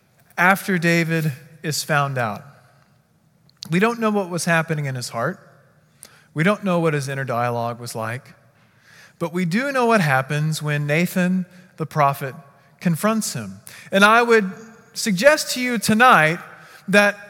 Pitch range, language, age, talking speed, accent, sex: 150-225 Hz, English, 40-59, 150 wpm, American, male